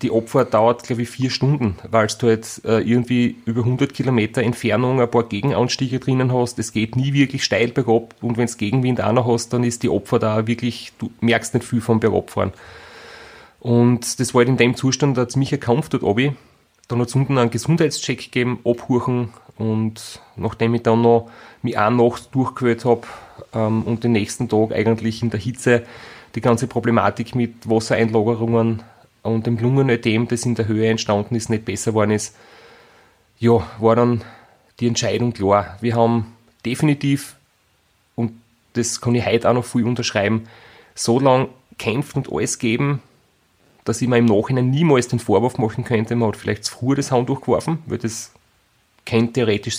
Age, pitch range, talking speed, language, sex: 30-49, 115-125 Hz, 185 wpm, German, male